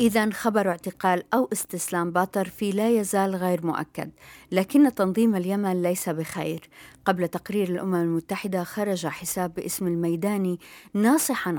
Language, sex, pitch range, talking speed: Arabic, female, 175-210 Hz, 130 wpm